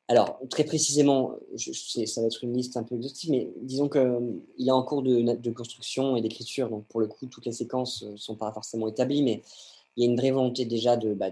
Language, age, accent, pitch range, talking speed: French, 20-39, French, 110-135 Hz, 250 wpm